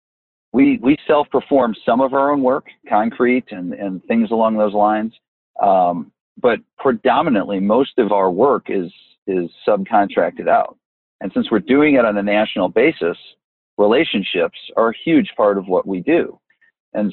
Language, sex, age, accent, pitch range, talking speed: English, male, 50-69, American, 105-140 Hz, 160 wpm